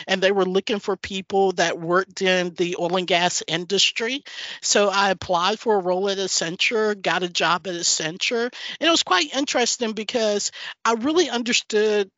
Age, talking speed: 50-69, 175 wpm